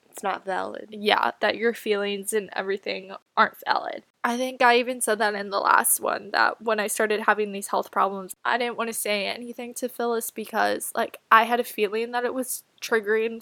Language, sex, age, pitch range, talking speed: English, female, 10-29, 205-230 Hz, 210 wpm